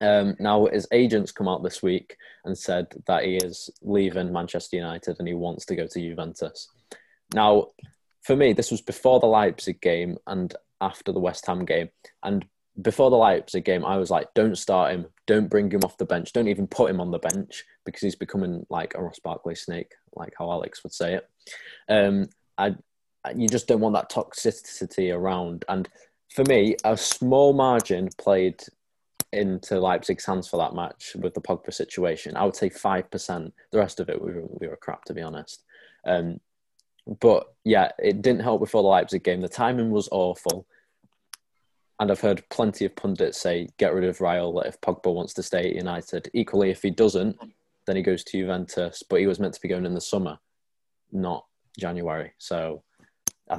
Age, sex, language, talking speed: 20-39, male, English, 195 wpm